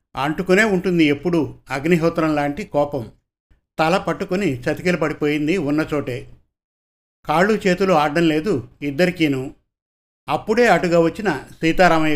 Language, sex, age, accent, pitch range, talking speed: Telugu, male, 50-69, native, 145-180 Hz, 105 wpm